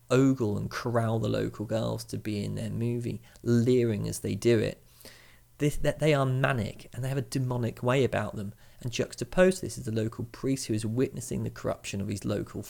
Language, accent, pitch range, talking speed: English, British, 110-125 Hz, 210 wpm